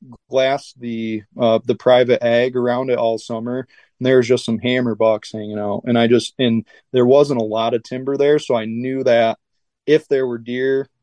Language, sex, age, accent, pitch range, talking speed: English, male, 20-39, American, 115-130 Hz, 205 wpm